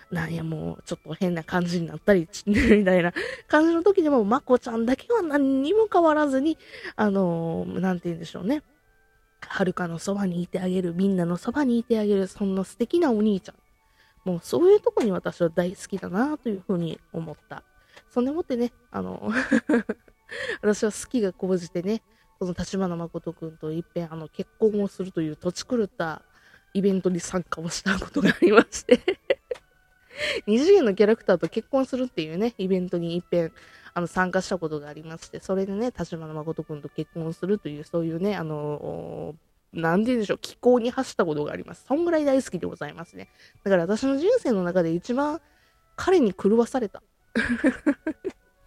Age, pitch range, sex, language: 20-39, 170-250 Hz, female, Japanese